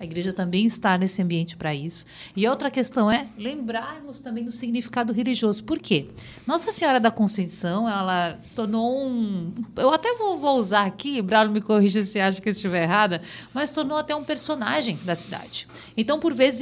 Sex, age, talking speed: female, 50-69, 190 wpm